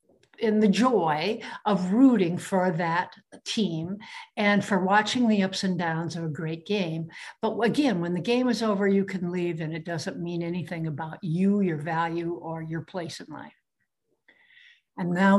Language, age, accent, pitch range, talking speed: English, 60-79, American, 175-230 Hz, 175 wpm